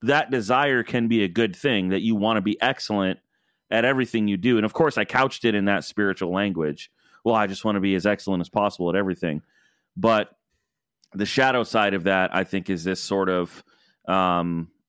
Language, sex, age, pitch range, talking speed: English, male, 30-49, 100-120 Hz, 210 wpm